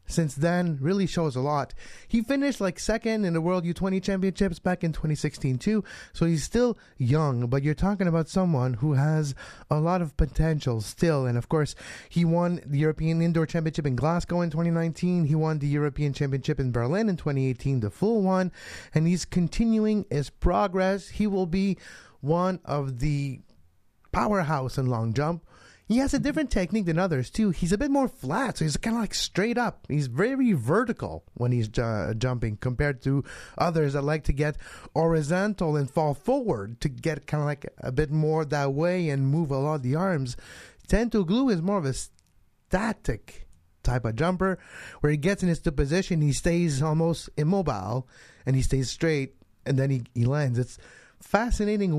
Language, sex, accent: English, male, American